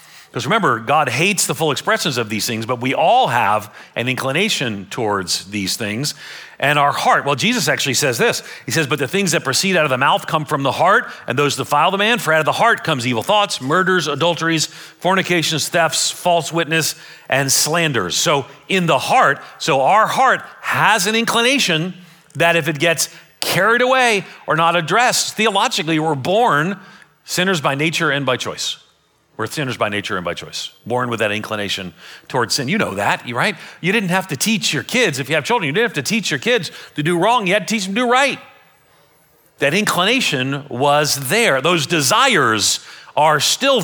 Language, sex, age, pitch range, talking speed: English, male, 40-59, 140-190 Hz, 200 wpm